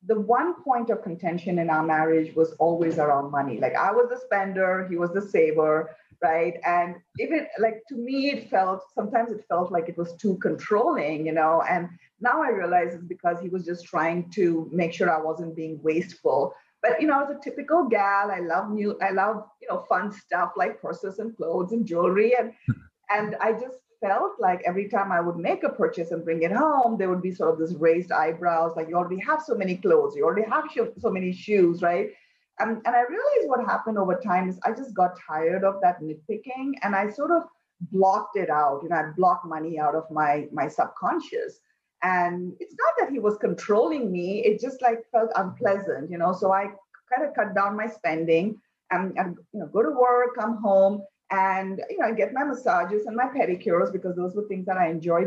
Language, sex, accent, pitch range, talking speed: English, female, Indian, 175-235 Hz, 215 wpm